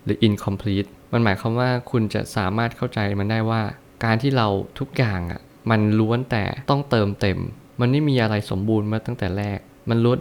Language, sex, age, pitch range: Thai, male, 20-39, 105-125 Hz